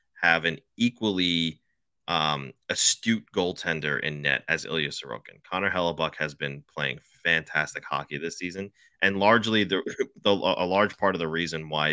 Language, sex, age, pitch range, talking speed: English, male, 30-49, 80-95 Hz, 155 wpm